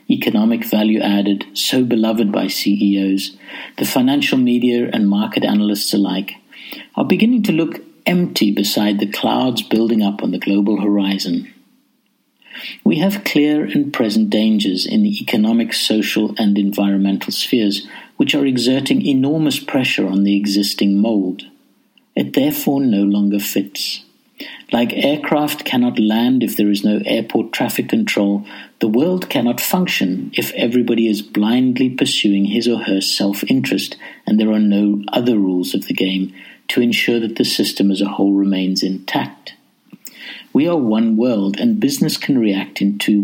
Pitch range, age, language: 100-135 Hz, 60-79, English